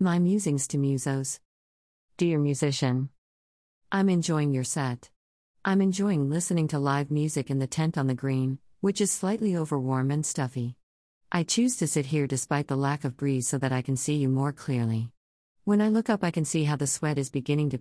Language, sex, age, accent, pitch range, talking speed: English, female, 50-69, American, 130-175 Hz, 200 wpm